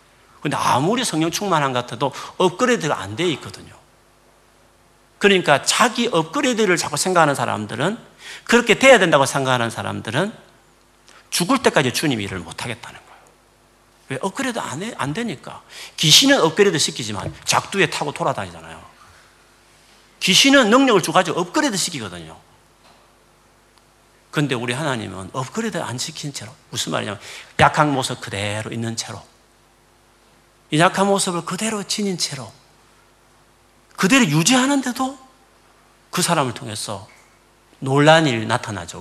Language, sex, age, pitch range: Korean, male, 40-59, 115-180 Hz